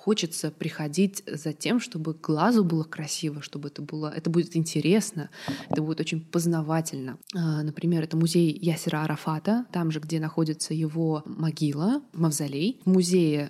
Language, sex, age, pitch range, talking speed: Russian, female, 20-39, 155-195 Hz, 140 wpm